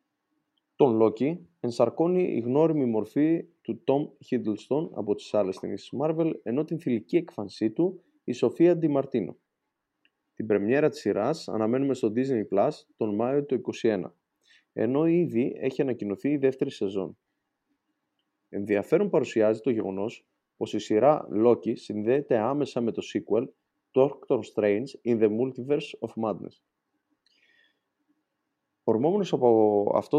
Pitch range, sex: 105-145 Hz, male